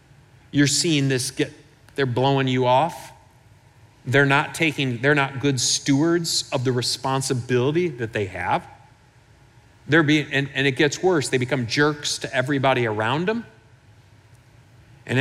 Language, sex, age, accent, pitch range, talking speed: English, male, 40-59, American, 120-150 Hz, 140 wpm